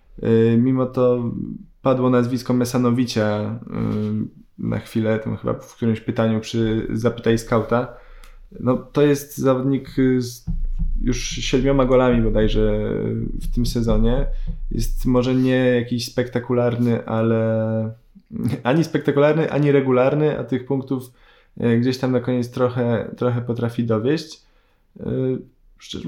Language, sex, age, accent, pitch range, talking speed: Polish, male, 20-39, native, 115-135 Hz, 115 wpm